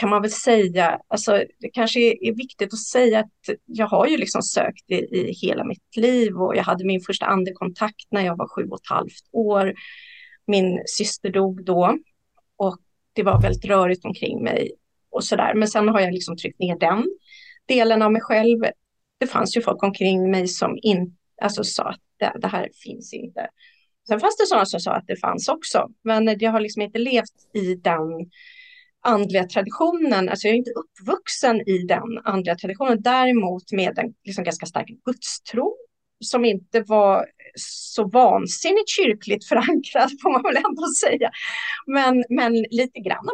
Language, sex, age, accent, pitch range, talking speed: Swedish, female, 30-49, native, 195-250 Hz, 180 wpm